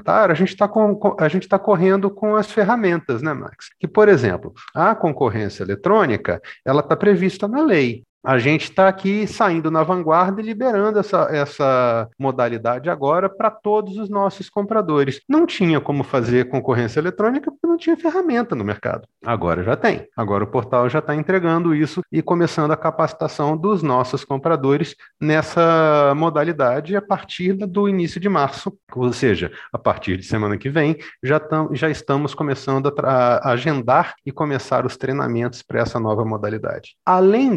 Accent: Brazilian